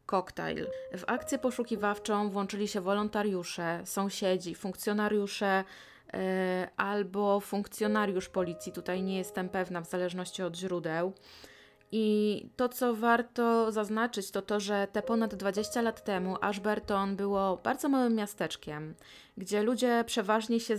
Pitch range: 185-215 Hz